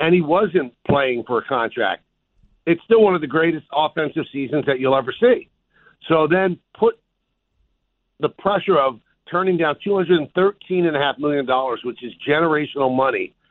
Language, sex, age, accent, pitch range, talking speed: English, male, 50-69, American, 140-180 Hz, 145 wpm